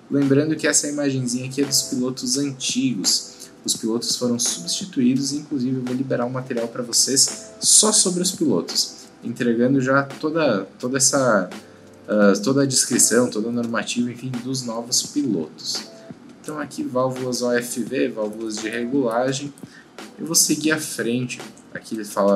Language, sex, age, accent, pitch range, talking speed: Portuguese, male, 20-39, Brazilian, 120-155 Hz, 150 wpm